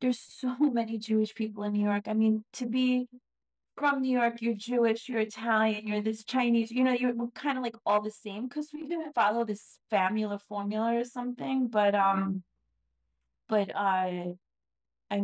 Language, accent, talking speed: English, American, 185 wpm